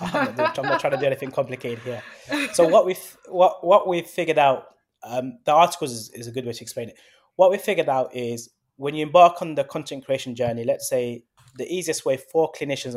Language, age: English, 20-39